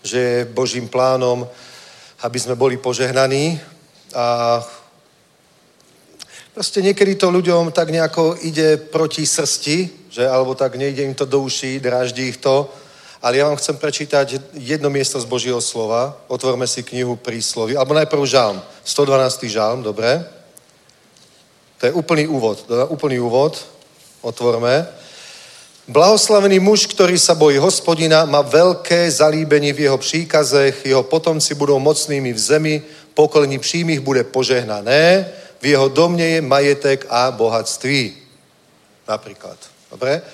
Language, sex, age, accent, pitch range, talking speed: Czech, male, 40-59, native, 125-155 Hz, 130 wpm